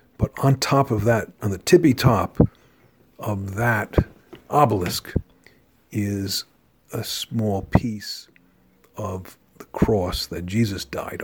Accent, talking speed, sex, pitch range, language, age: American, 115 wpm, male, 100-120 Hz, English, 50-69